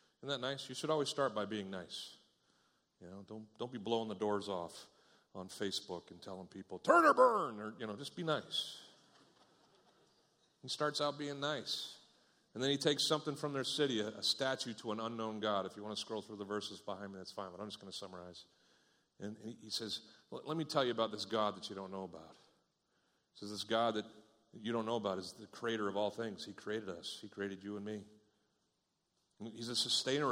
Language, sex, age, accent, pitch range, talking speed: English, male, 40-59, American, 105-125 Hz, 225 wpm